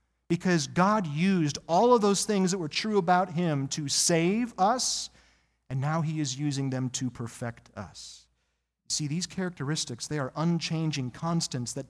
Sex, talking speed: male, 160 wpm